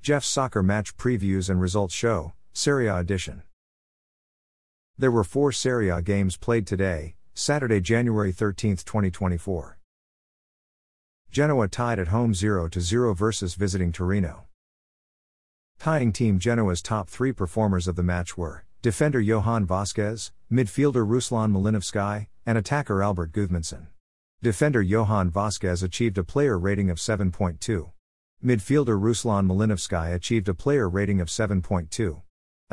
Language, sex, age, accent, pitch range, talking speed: English, male, 50-69, American, 90-115 Hz, 125 wpm